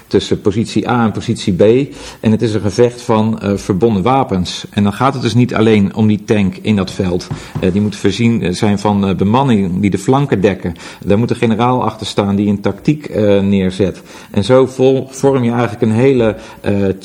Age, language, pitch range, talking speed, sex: 40-59, Dutch, 100-125 Hz, 210 wpm, male